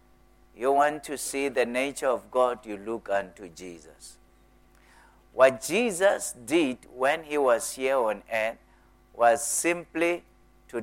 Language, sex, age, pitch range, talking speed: English, male, 60-79, 120-145 Hz, 135 wpm